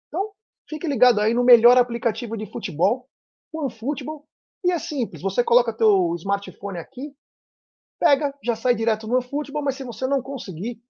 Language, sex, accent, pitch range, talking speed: Portuguese, male, Brazilian, 170-265 Hz, 160 wpm